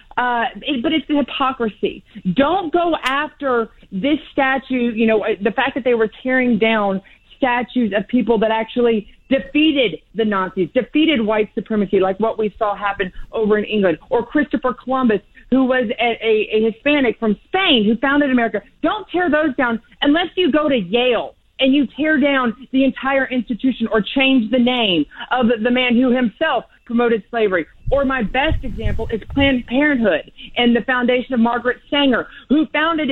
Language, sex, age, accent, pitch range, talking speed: English, female, 40-59, American, 225-275 Hz, 170 wpm